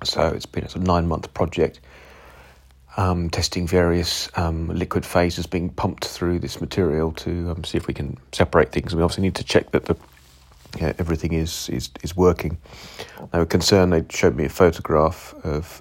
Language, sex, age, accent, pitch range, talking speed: English, male, 40-59, British, 70-85 Hz, 185 wpm